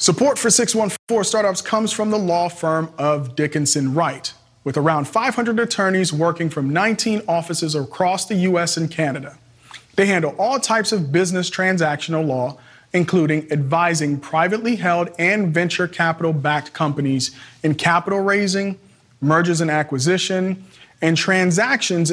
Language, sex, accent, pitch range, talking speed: English, male, American, 145-195 Hz, 135 wpm